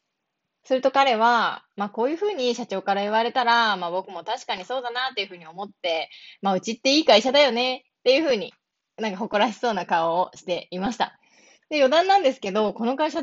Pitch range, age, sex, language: 200-280 Hz, 20-39, female, Japanese